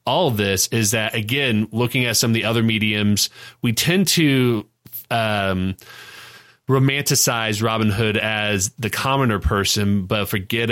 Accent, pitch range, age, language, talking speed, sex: American, 105-120 Hz, 30-49, English, 145 wpm, male